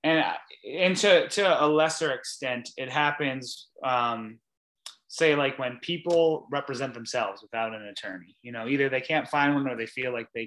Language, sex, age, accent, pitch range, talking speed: English, male, 20-39, American, 120-165 Hz, 180 wpm